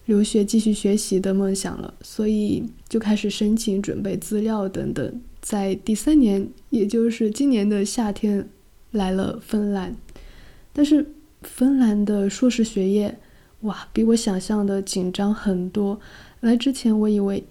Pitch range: 210-245 Hz